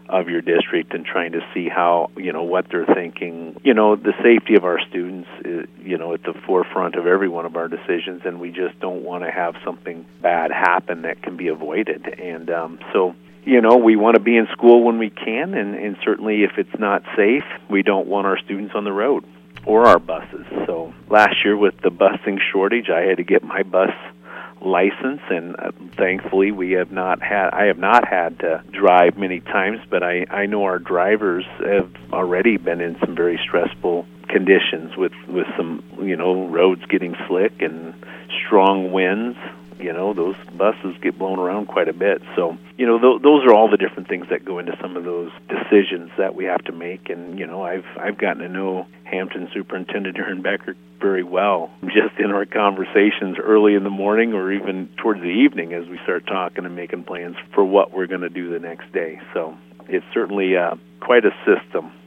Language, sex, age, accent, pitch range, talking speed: English, male, 50-69, American, 80-100 Hz, 205 wpm